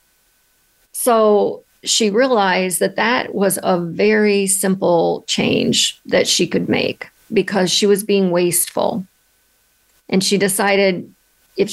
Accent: American